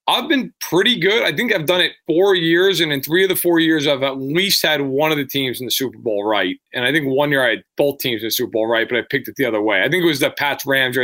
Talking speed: 325 wpm